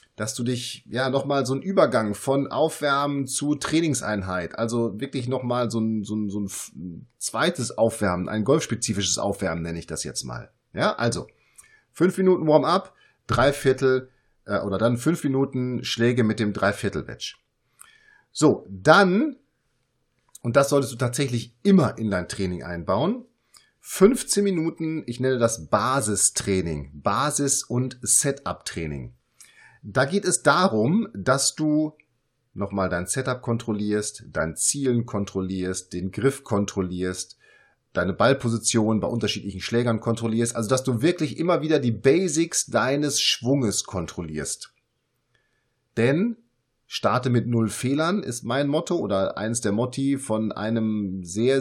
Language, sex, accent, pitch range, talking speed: German, male, German, 105-140 Hz, 135 wpm